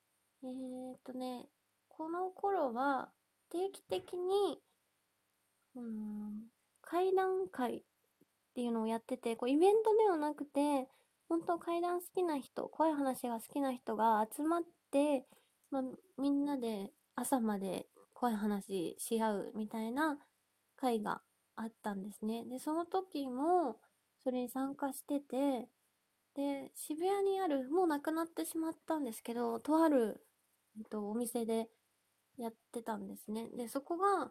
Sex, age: female, 20-39